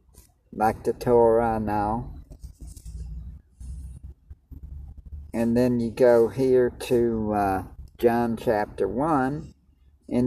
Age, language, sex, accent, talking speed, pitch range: 50-69, English, male, American, 95 wpm, 80-115 Hz